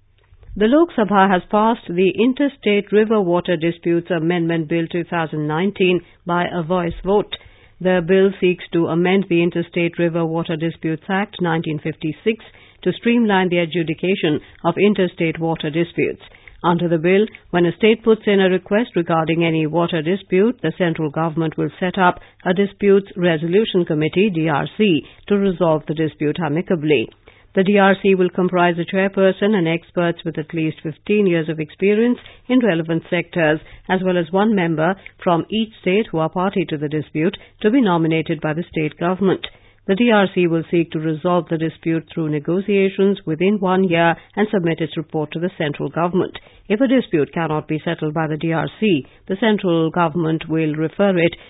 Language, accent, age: English, Indian, 50-69